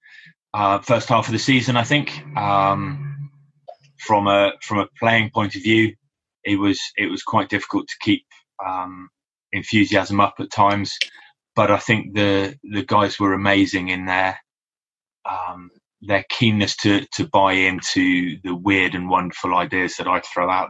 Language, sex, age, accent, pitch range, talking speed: English, male, 20-39, British, 95-115 Hz, 160 wpm